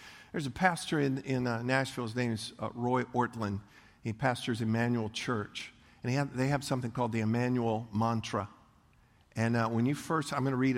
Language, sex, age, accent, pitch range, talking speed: English, male, 50-69, American, 110-145 Hz, 200 wpm